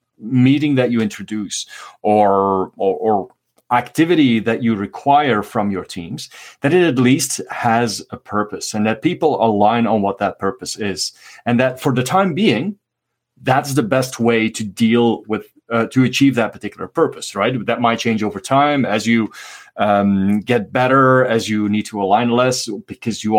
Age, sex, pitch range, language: 30-49, male, 105-125 Hz, English